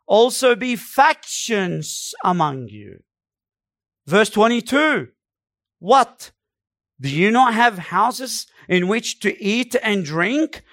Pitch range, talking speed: 145-245 Hz, 105 wpm